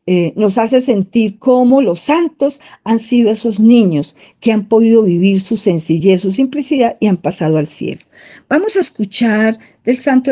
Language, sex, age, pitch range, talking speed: Spanish, female, 50-69, 175-245 Hz, 170 wpm